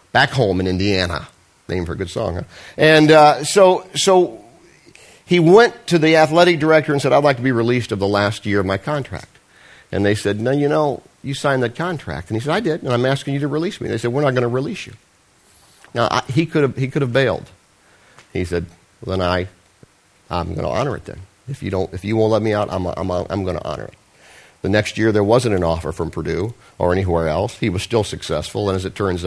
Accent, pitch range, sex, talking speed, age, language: American, 90-145 Hz, male, 245 wpm, 50-69, English